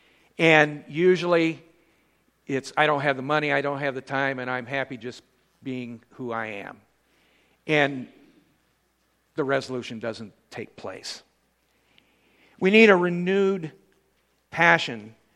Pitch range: 125-155 Hz